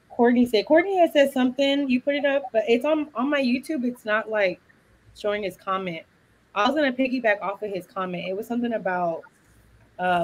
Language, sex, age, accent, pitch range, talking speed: English, female, 20-39, American, 185-245 Hz, 205 wpm